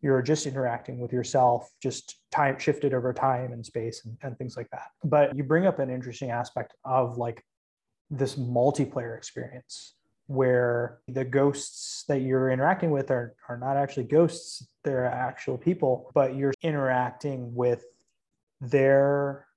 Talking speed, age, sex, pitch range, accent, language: 150 wpm, 20-39, male, 125-140 Hz, American, English